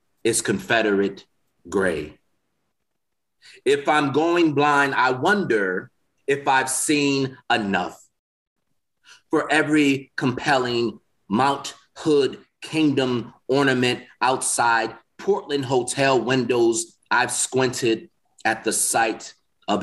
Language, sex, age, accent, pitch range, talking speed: English, male, 30-49, American, 110-140 Hz, 90 wpm